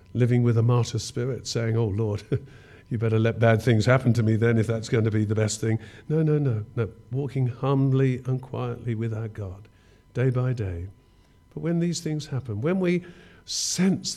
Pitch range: 110-155 Hz